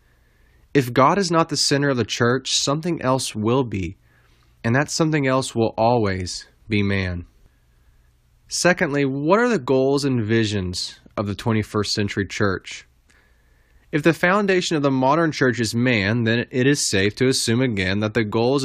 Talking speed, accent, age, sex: 165 wpm, American, 20-39, male